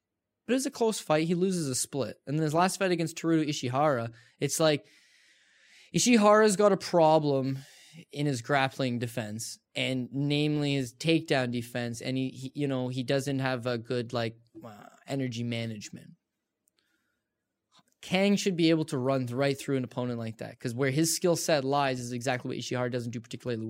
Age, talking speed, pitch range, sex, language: 10-29, 180 wpm, 130-170 Hz, male, English